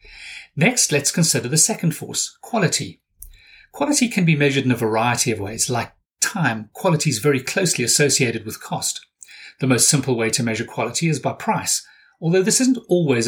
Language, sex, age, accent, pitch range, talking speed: English, male, 40-59, British, 120-160 Hz, 175 wpm